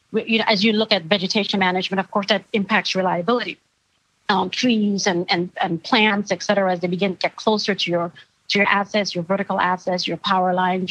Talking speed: 205 wpm